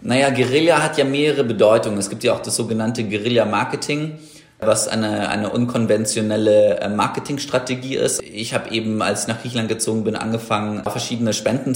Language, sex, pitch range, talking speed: German, male, 105-115 Hz, 160 wpm